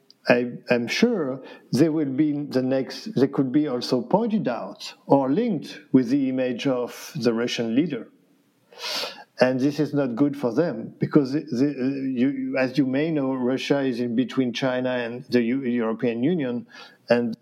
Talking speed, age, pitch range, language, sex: 165 wpm, 50-69, 125-170 Hz, English, male